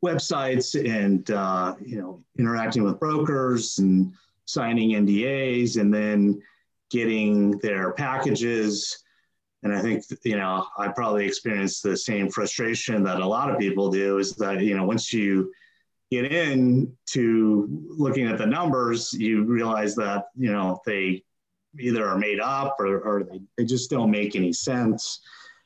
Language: English